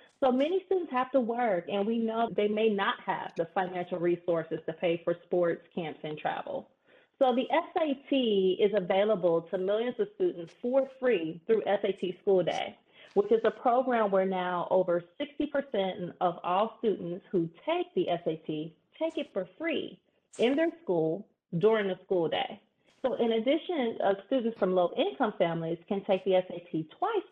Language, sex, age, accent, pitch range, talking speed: English, female, 30-49, American, 175-245 Hz, 170 wpm